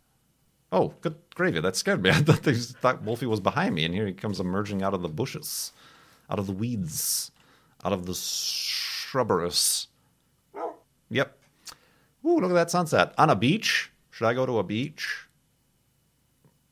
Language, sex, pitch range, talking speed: English, male, 95-135 Hz, 165 wpm